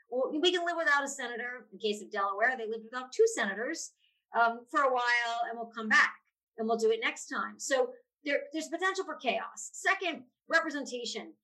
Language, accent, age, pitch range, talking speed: English, American, 40-59, 225-295 Hz, 190 wpm